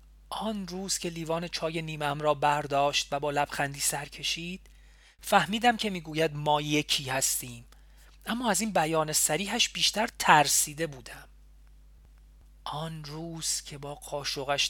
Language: Persian